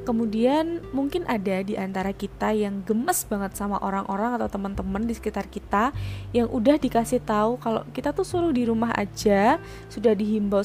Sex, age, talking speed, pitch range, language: female, 20-39, 165 wpm, 195-250 Hz, Indonesian